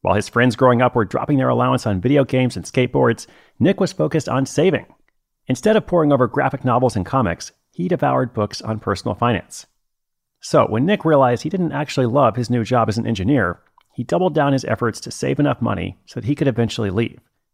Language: English